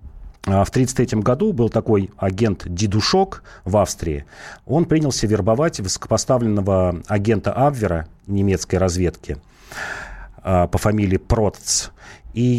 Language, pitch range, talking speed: Russian, 95-115 Hz, 95 wpm